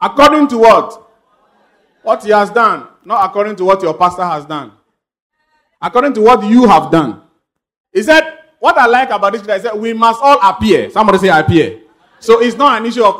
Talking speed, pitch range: 195 wpm, 155-225 Hz